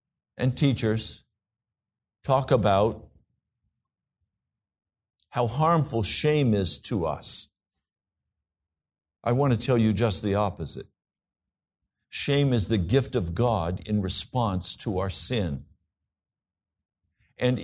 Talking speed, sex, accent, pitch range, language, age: 100 wpm, male, American, 100-145 Hz, English, 60-79